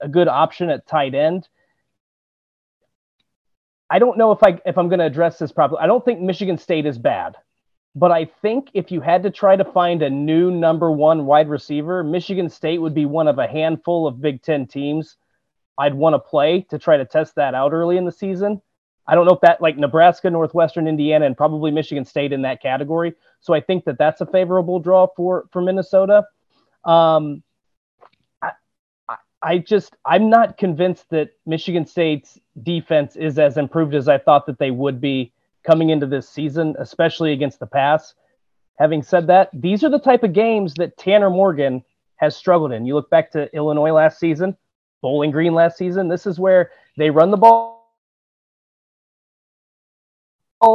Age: 30-49